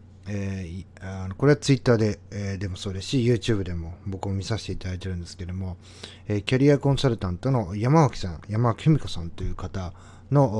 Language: Japanese